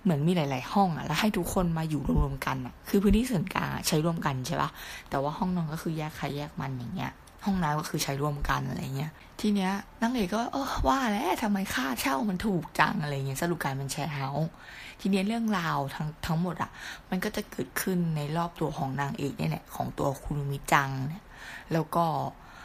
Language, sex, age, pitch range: Thai, female, 20-39, 145-185 Hz